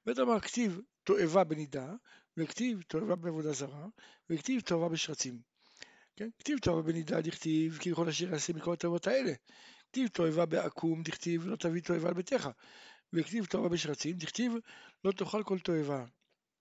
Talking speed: 120 wpm